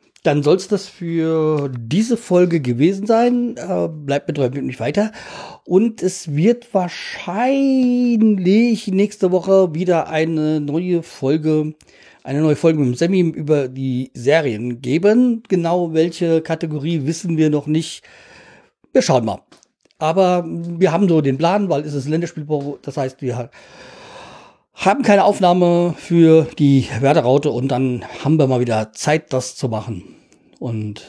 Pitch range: 130-175 Hz